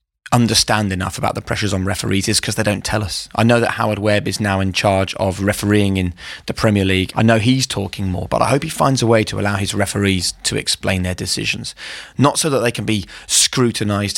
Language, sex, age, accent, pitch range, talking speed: English, male, 30-49, British, 100-120 Hz, 235 wpm